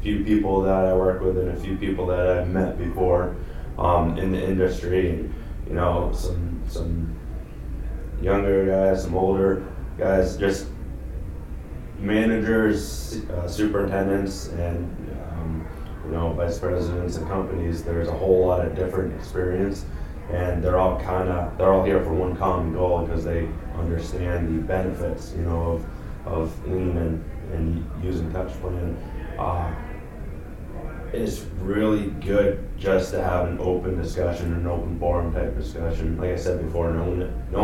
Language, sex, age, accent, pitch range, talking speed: English, male, 20-39, American, 85-95 Hz, 155 wpm